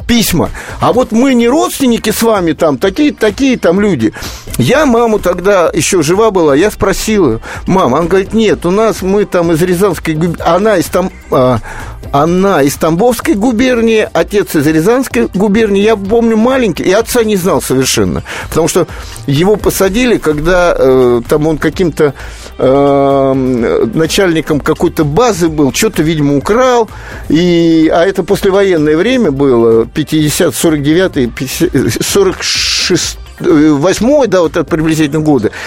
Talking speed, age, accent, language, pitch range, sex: 140 wpm, 50-69, native, Russian, 155-225 Hz, male